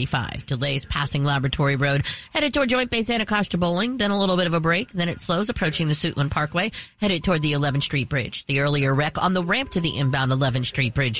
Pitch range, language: 145-200 Hz, English